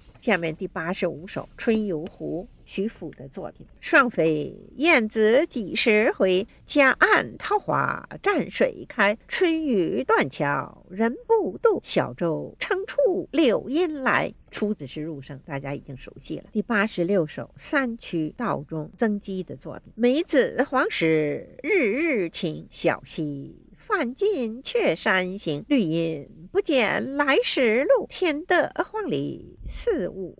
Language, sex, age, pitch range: Chinese, female, 50-69, 170-285 Hz